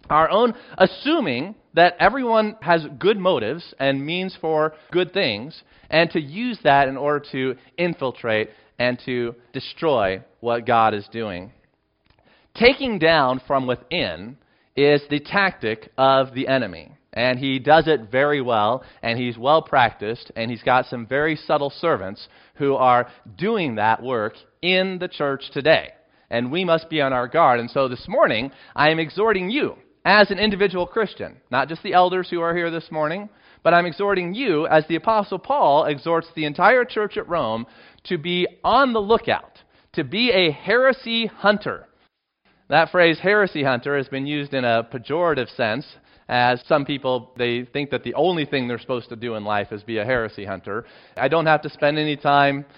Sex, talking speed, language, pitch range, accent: male, 175 wpm, English, 130-180 Hz, American